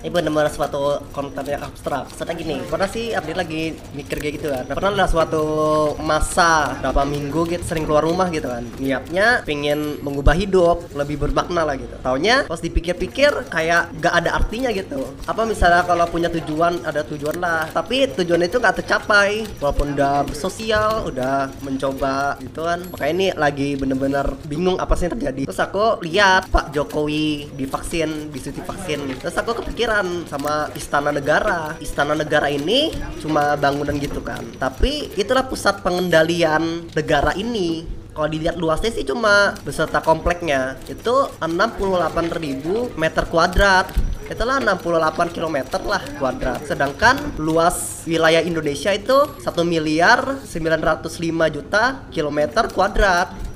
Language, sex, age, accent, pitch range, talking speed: Indonesian, female, 20-39, native, 145-175 Hz, 145 wpm